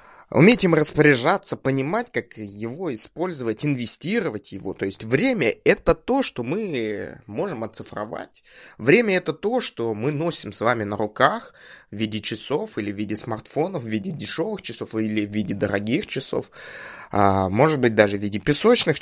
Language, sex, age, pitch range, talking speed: Russian, male, 20-39, 110-175 Hz, 160 wpm